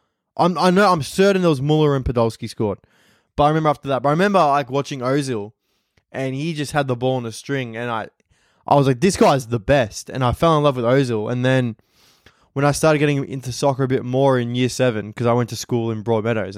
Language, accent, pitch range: English, Australian, 115-140 Hz